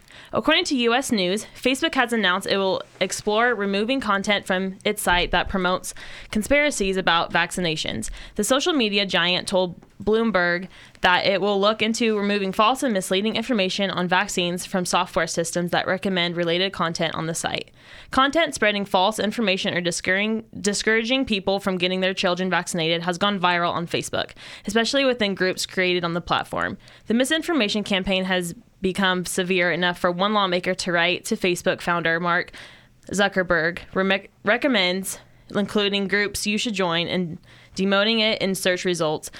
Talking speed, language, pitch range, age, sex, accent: 155 wpm, English, 175-210 Hz, 10-29, female, American